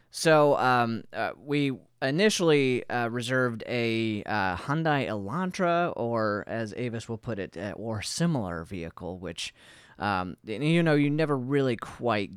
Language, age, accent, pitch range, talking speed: English, 30-49, American, 110-145 Hz, 135 wpm